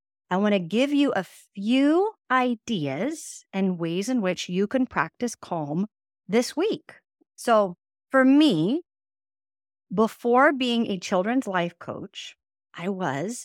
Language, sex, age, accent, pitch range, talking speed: English, female, 40-59, American, 175-250 Hz, 130 wpm